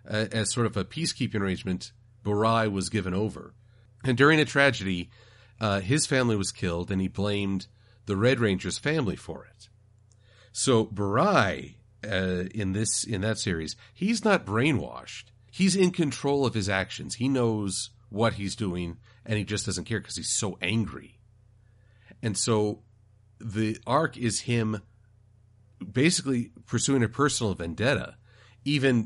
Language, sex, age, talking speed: English, male, 40-59, 150 wpm